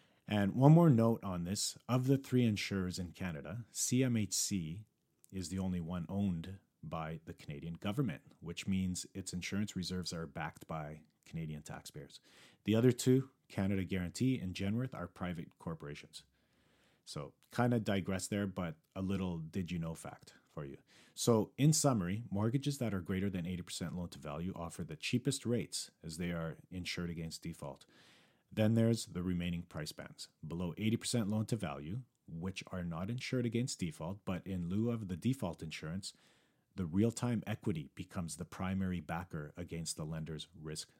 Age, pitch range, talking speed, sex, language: 40-59, 85-115 Hz, 155 wpm, male, English